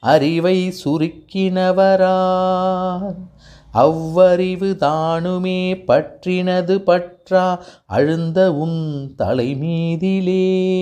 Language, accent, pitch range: Tamil, native, 180-230 Hz